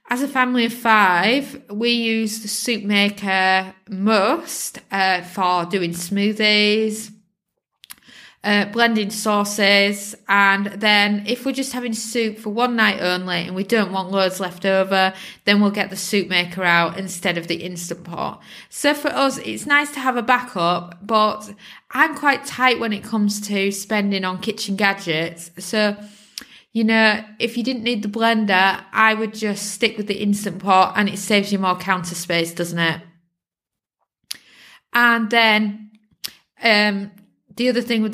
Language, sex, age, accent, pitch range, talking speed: English, female, 20-39, British, 190-220 Hz, 160 wpm